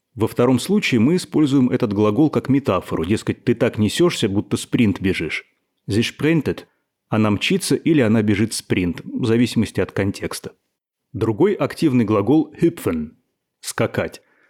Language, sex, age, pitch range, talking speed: Russian, male, 30-49, 105-135 Hz, 150 wpm